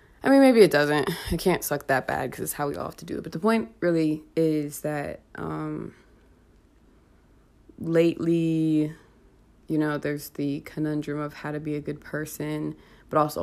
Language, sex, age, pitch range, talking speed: English, female, 20-39, 140-165 Hz, 185 wpm